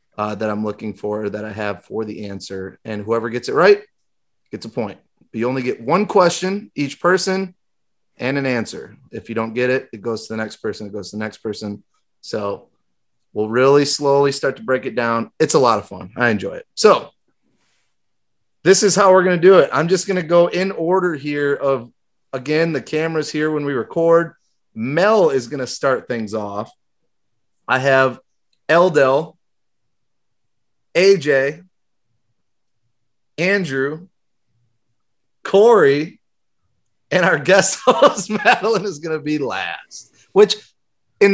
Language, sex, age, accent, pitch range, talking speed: English, male, 30-49, American, 115-175 Hz, 165 wpm